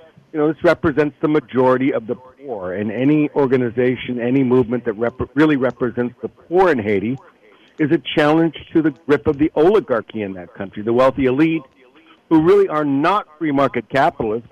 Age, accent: 60-79, American